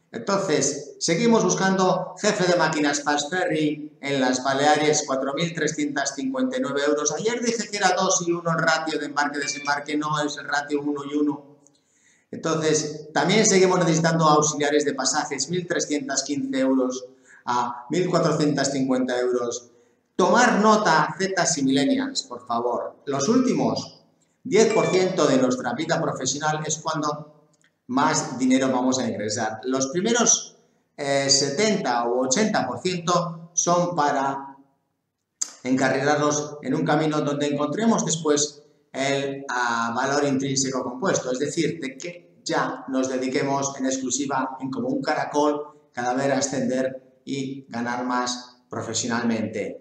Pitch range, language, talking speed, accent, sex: 130-165 Hz, English, 125 wpm, Spanish, male